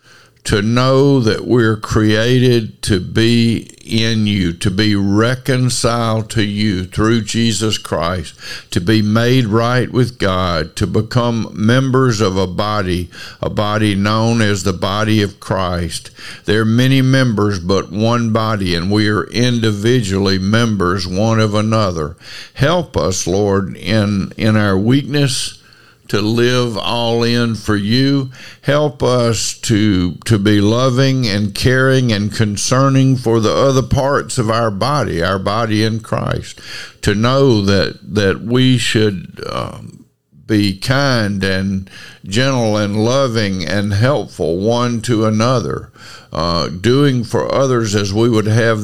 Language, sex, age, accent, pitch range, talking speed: English, male, 60-79, American, 105-120 Hz, 140 wpm